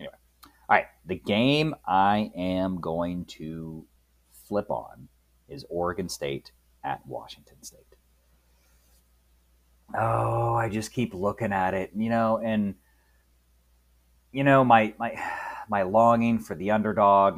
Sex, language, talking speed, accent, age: male, English, 115 wpm, American, 30-49